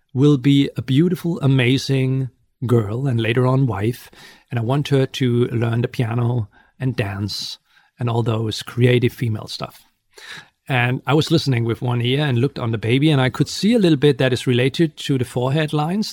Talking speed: 195 wpm